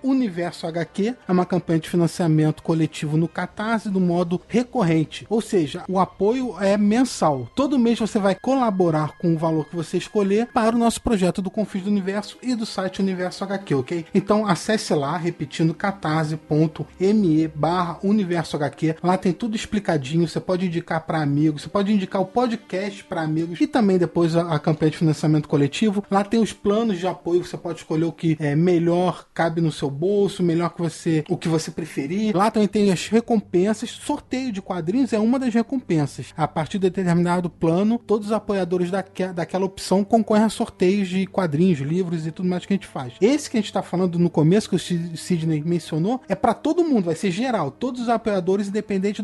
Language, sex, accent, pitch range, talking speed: Portuguese, male, Brazilian, 170-210 Hz, 195 wpm